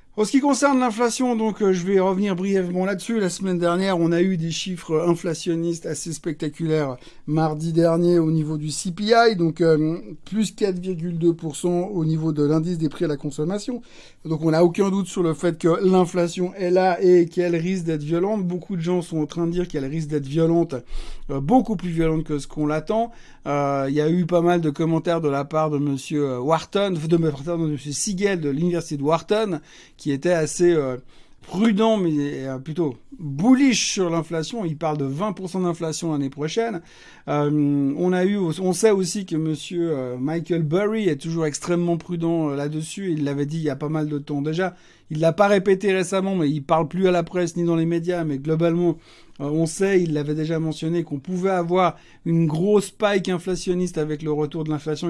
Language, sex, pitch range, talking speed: French, male, 155-185 Hz, 200 wpm